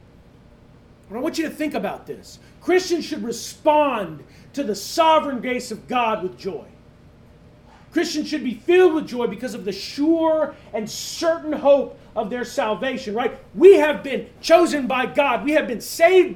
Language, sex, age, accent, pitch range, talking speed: English, male, 40-59, American, 250-315 Hz, 165 wpm